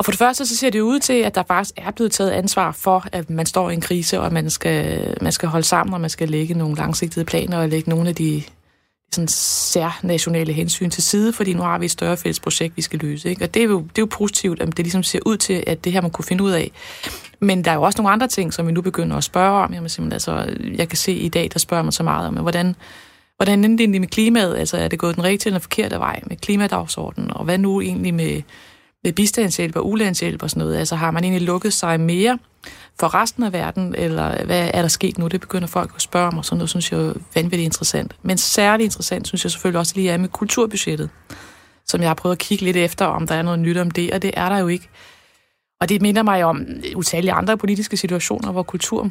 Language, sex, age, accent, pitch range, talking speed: Danish, female, 20-39, native, 170-200 Hz, 265 wpm